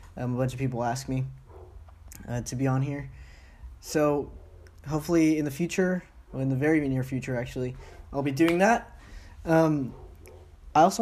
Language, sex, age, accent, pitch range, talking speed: English, male, 10-29, American, 125-160 Hz, 170 wpm